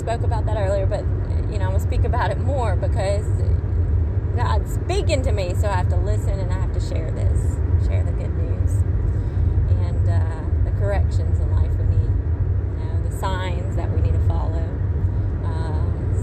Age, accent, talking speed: 20-39, American, 190 wpm